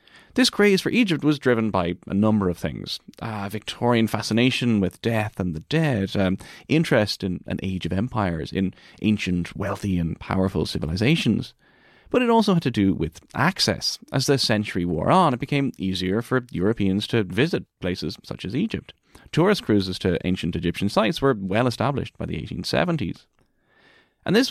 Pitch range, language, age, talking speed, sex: 95-130 Hz, English, 30-49, 170 wpm, male